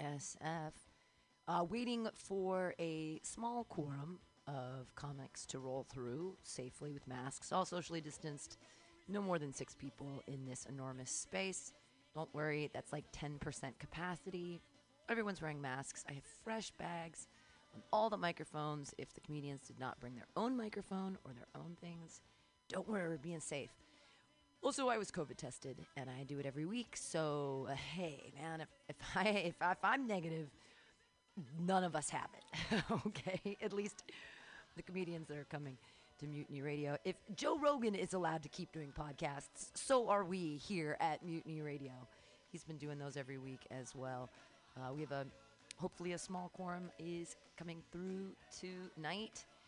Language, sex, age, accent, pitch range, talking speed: English, female, 30-49, American, 140-185 Hz, 165 wpm